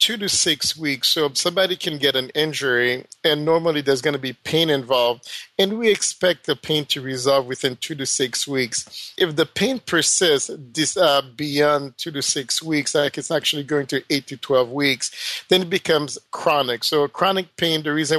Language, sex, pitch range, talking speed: English, male, 135-160 Hz, 190 wpm